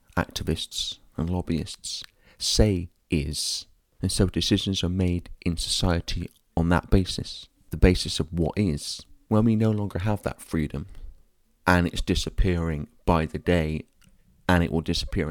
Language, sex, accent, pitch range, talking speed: English, male, British, 80-100 Hz, 145 wpm